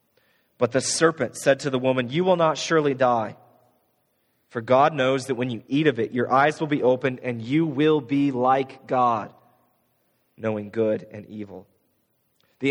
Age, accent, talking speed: 30-49, American, 175 wpm